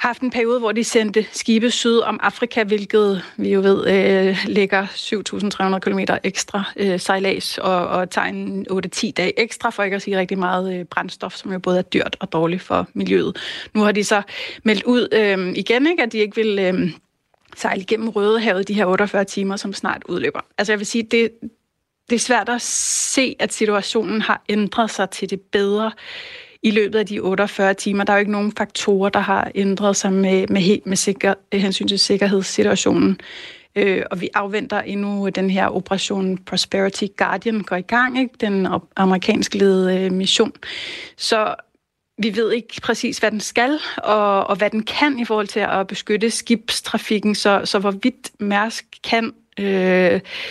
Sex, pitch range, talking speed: female, 195-220 Hz, 185 wpm